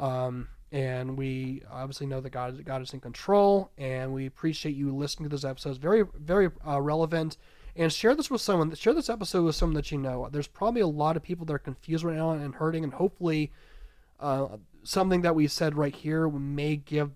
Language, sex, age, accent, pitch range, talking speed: English, male, 30-49, American, 140-170 Hz, 215 wpm